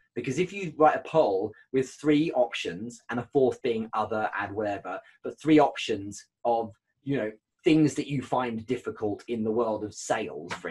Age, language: 20-39, English